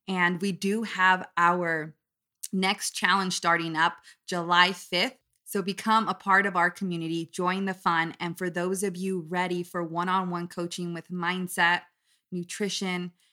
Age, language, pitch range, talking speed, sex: 20-39, English, 165-185 Hz, 150 wpm, female